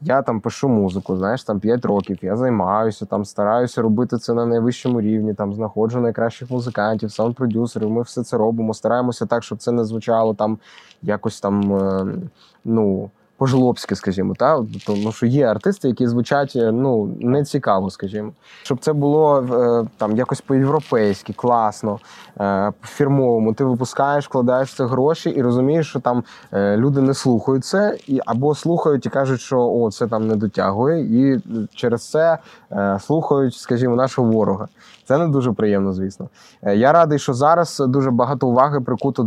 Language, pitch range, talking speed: Ukrainian, 110-130 Hz, 150 wpm